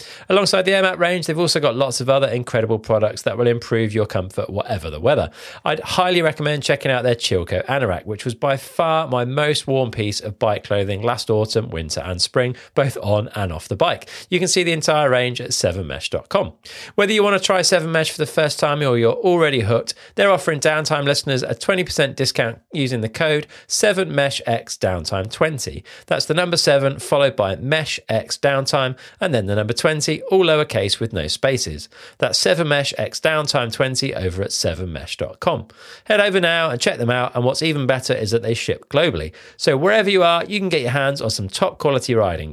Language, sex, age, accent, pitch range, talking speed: English, male, 40-59, British, 115-160 Hz, 195 wpm